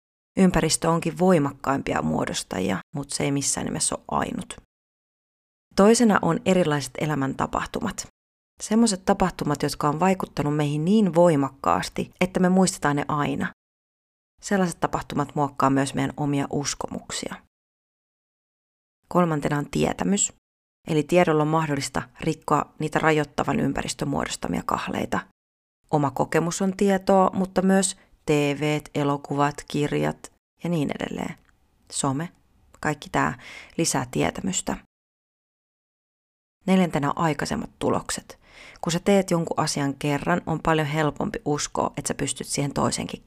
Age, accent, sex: 30-49, native, female